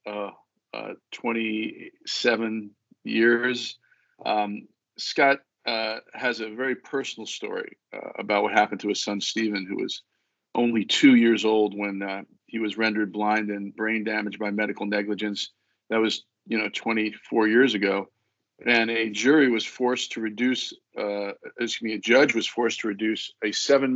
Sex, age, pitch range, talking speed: male, 40-59, 105-120 Hz, 160 wpm